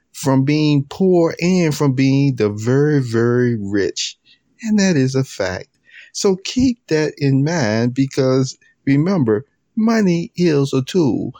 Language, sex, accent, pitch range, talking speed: English, male, American, 115-155 Hz, 135 wpm